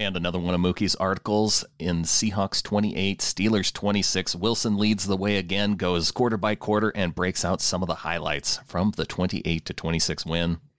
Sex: male